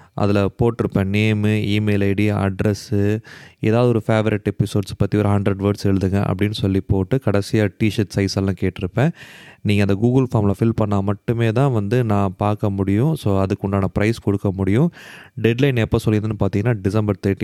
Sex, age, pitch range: male, 30-49, 105-130 Hz